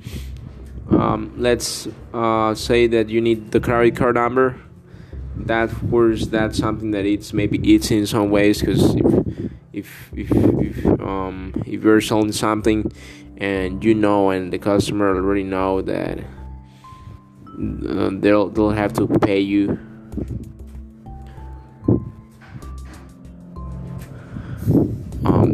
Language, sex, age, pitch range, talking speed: English, male, 20-39, 95-115 Hz, 115 wpm